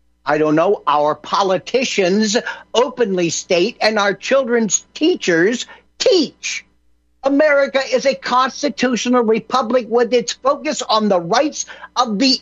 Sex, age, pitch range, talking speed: male, 60-79, 185-275 Hz, 120 wpm